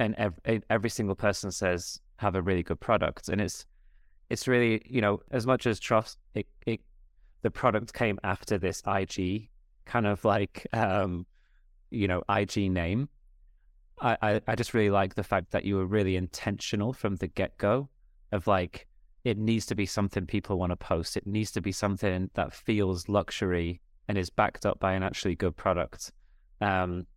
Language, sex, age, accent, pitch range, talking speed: English, male, 20-39, British, 90-110 Hz, 180 wpm